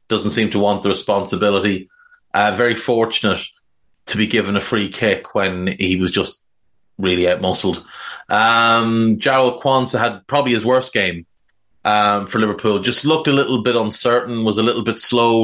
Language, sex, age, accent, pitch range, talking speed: English, male, 30-49, Irish, 105-125 Hz, 165 wpm